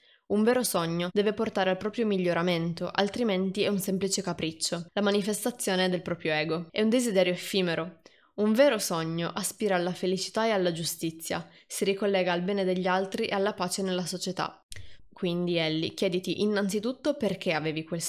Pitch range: 180-210 Hz